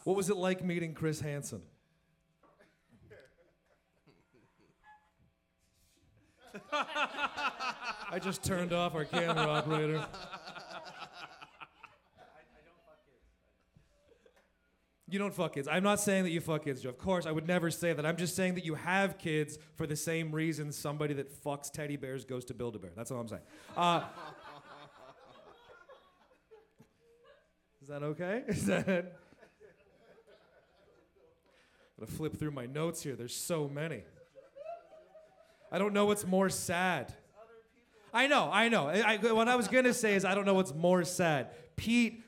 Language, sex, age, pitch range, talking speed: English, male, 30-49, 150-190 Hz, 140 wpm